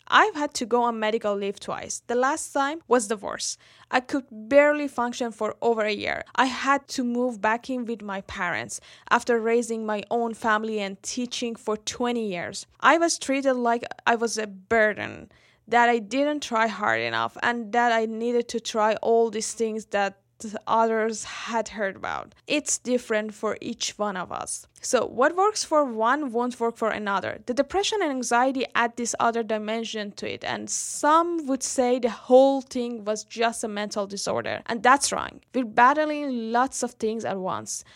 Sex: female